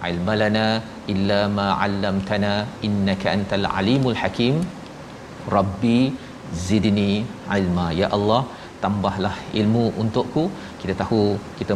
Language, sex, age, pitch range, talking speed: Malayalam, male, 40-59, 100-120 Hz, 55 wpm